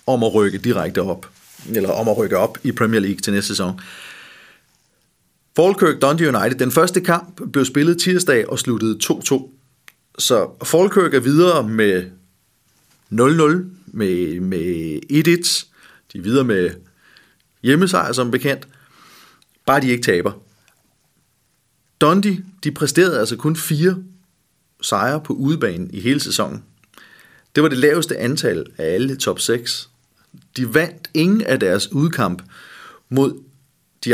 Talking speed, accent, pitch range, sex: 135 wpm, native, 110-155 Hz, male